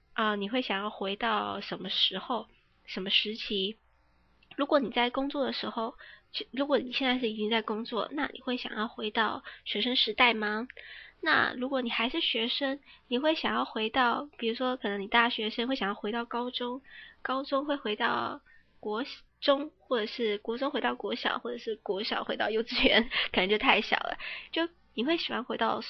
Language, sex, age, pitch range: Chinese, female, 20-39, 215-270 Hz